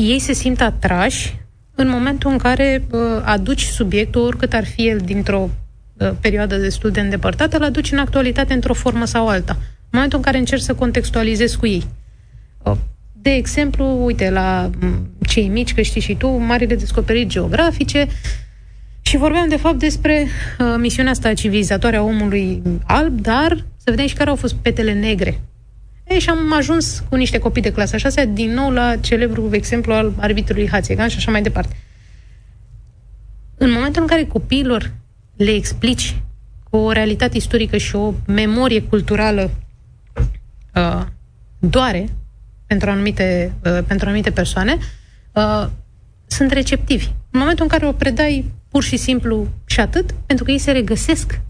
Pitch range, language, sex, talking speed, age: 205-270 Hz, Romanian, female, 155 wpm, 30-49